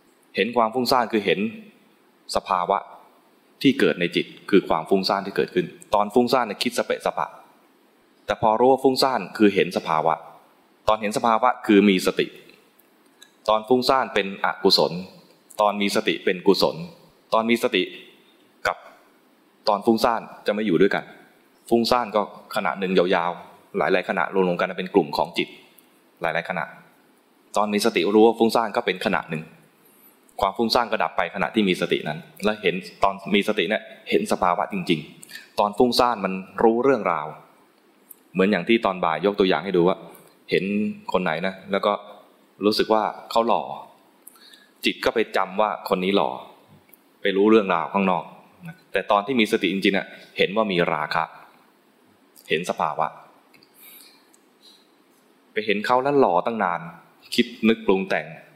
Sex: male